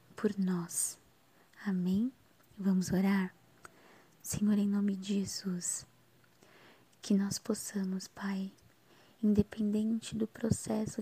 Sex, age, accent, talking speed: female, 20-39, Brazilian, 95 wpm